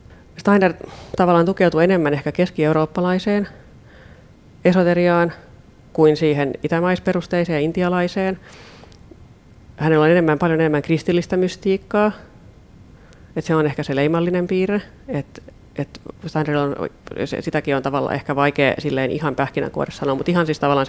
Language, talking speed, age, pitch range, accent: Finnish, 120 wpm, 30-49, 140-170 Hz, native